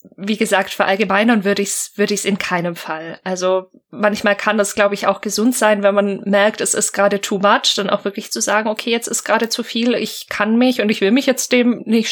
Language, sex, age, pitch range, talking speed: German, female, 20-39, 200-245 Hz, 250 wpm